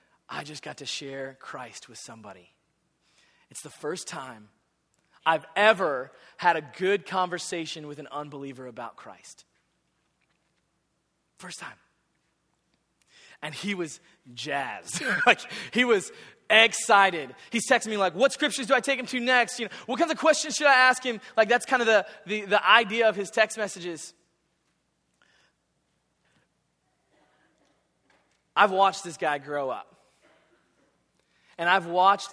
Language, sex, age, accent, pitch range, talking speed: English, male, 20-39, American, 140-205 Hz, 140 wpm